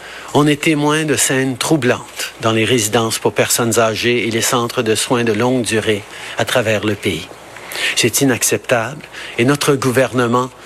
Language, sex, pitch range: French, male, 120-140 Hz